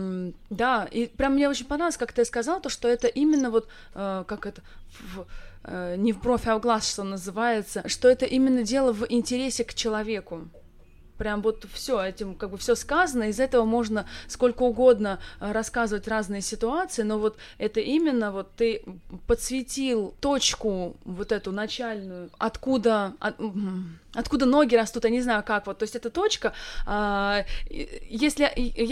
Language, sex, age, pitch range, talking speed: Russian, female, 20-39, 210-250 Hz, 160 wpm